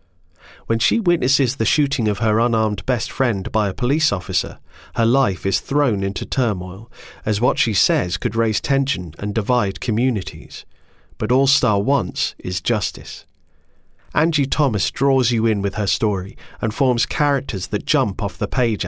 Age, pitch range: 40-59, 95-130 Hz